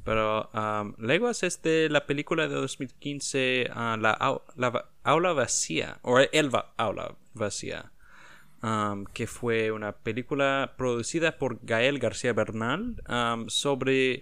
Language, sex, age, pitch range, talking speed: English, male, 20-39, 110-135 Hz, 130 wpm